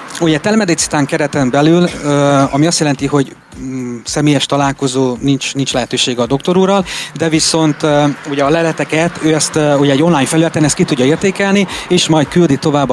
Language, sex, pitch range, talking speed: Hungarian, male, 130-165 Hz, 160 wpm